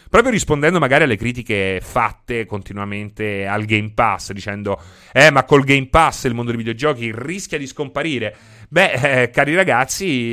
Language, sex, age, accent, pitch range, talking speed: Italian, male, 30-49, native, 110-155 Hz, 155 wpm